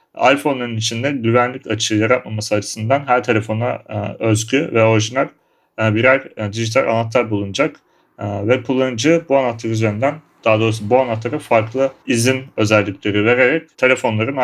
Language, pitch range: Turkish, 110-130 Hz